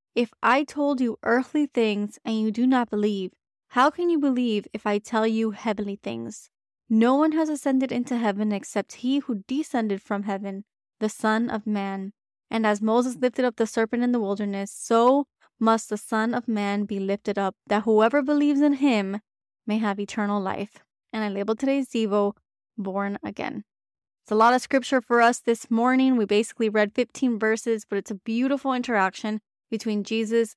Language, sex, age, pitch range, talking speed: English, female, 20-39, 205-245 Hz, 185 wpm